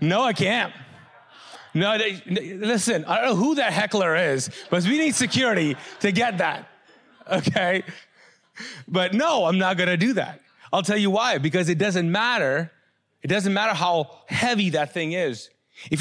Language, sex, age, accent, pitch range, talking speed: English, male, 30-49, American, 140-195 Hz, 170 wpm